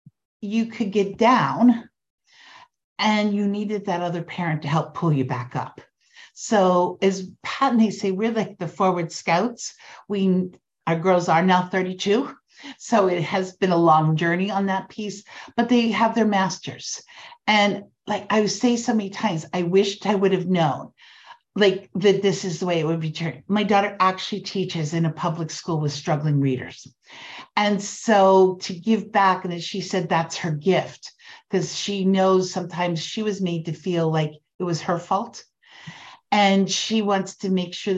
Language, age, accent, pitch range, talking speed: English, 50-69, American, 170-205 Hz, 180 wpm